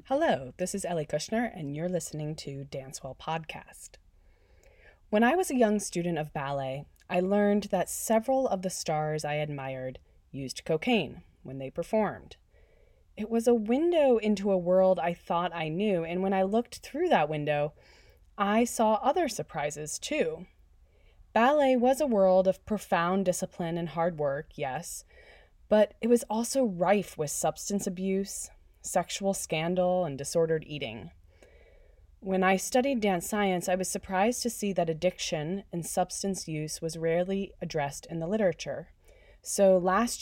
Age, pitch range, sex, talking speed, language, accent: 20-39, 155-200 Hz, female, 155 wpm, English, American